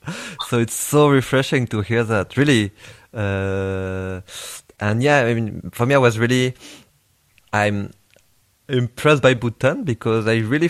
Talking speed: 140 wpm